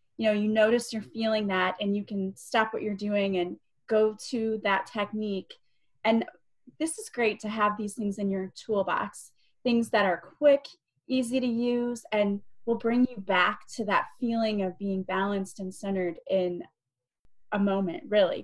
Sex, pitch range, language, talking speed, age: female, 190-230 Hz, English, 175 wpm, 30-49